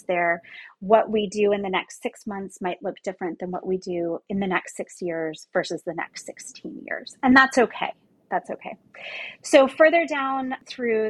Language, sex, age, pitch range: English, female, 30-49, 185-225 Hz